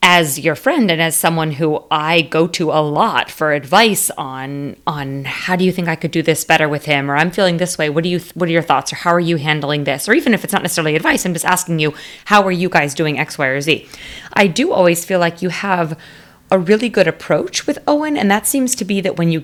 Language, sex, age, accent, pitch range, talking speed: English, female, 30-49, American, 155-190 Hz, 265 wpm